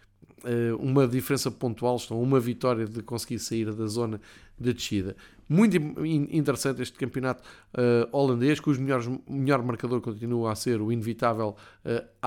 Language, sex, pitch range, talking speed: Portuguese, male, 115-135 Hz, 140 wpm